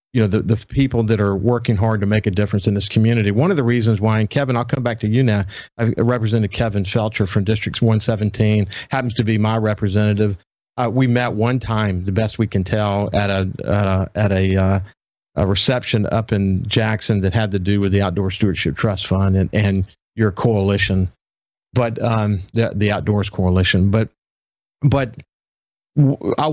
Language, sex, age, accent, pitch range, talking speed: English, male, 50-69, American, 100-115 Hz, 190 wpm